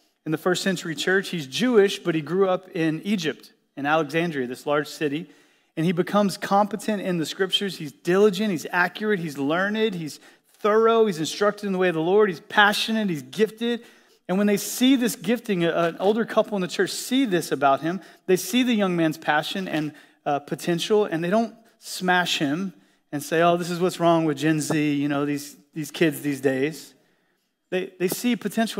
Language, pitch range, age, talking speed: English, 150-200 Hz, 30-49, 200 wpm